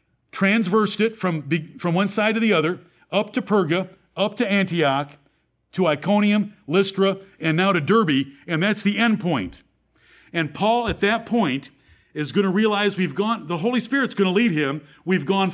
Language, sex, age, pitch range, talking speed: English, male, 50-69, 165-220 Hz, 180 wpm